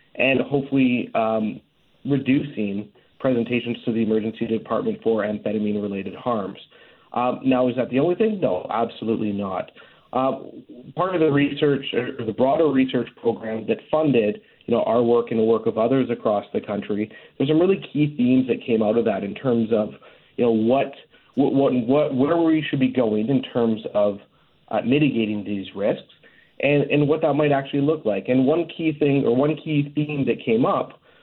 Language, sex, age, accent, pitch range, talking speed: English, male, 40-59, American, 115-145 Hz, 185 wpm